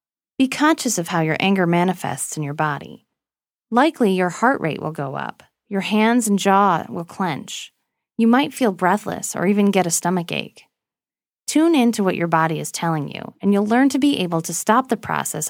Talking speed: 200 wpm